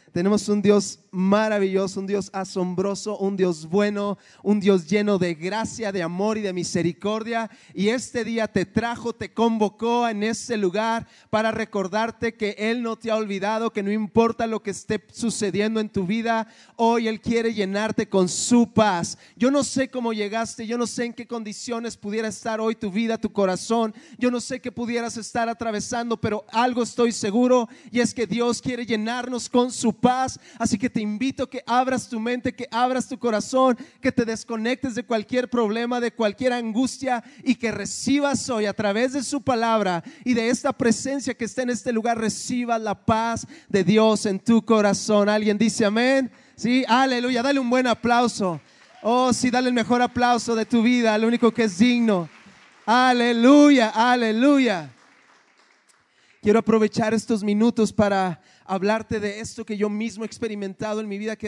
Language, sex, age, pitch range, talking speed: Spanish, male, 30-49, 210-245 Hz, 180 wpm